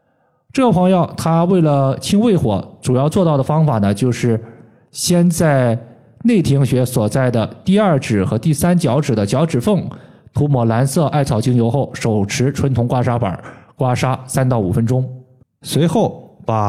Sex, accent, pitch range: male, native, 115-165 Hz